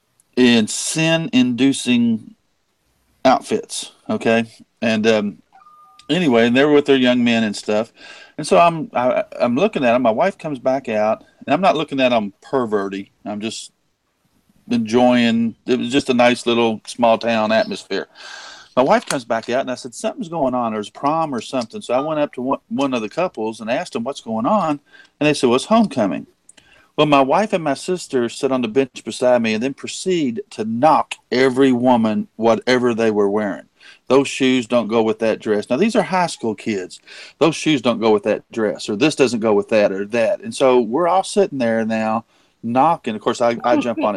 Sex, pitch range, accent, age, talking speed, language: male, 115-175 Hz, American, 50-69, 200 wpm, English